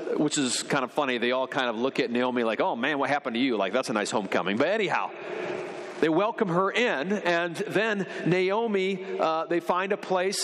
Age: 40-59